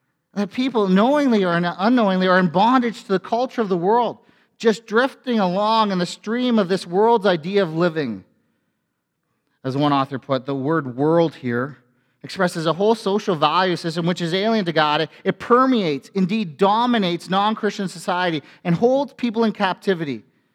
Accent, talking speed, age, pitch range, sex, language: American, 165 wpm, 40-59, 155-205 Hz, male, English